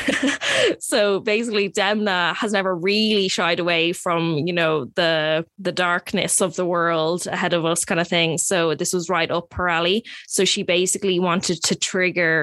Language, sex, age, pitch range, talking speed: English, female, 20-39, 170-195 Hz, 175 wpm